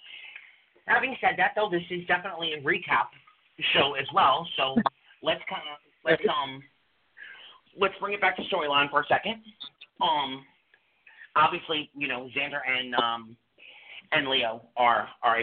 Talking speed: 145 wpm